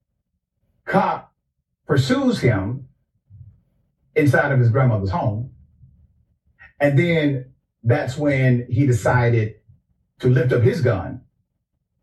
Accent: American